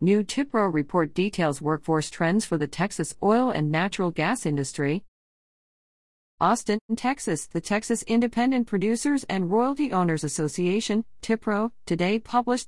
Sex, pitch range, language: female, 155-210 Hz, English